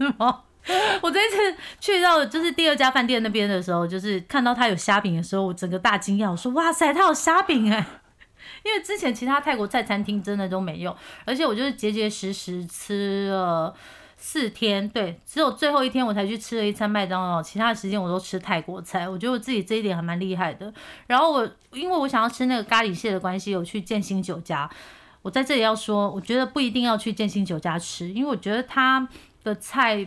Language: Chinese